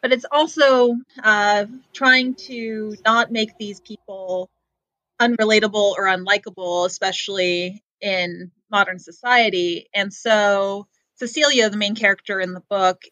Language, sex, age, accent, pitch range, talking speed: English, female, 30-49, American, 190-225 Hz, 120 wpm